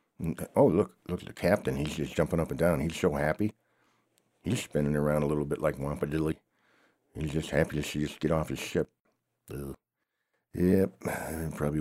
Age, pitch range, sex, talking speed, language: 60-79, 70-85 Hz, male, 180 wpm, English